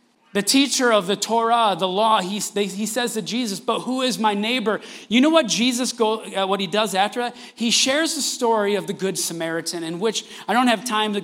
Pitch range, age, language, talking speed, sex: 170-235 Hz, 40-59, English, 230 wpm, male